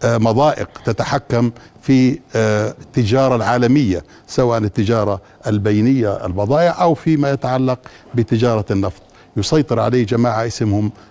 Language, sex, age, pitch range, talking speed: Arabic, male, 60-79, 115-140 Hz, 95 wpm